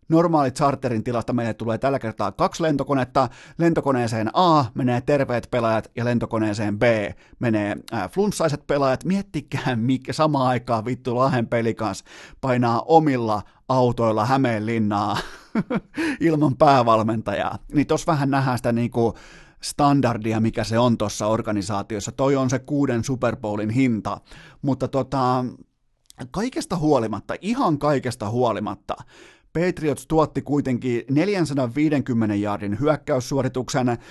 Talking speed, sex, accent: 115 wpm, male, native